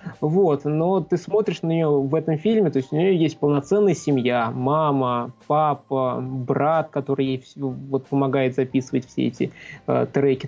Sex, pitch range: male, 135-155 Hz